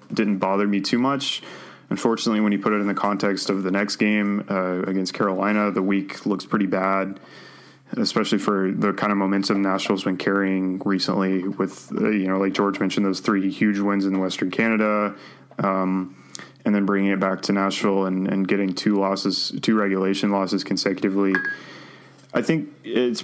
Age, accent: 20-39, American